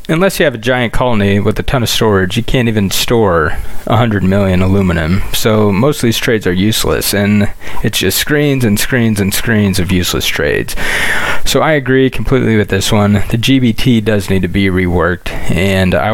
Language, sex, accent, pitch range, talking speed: English, male, American, 100-130 Hz, 195 wpm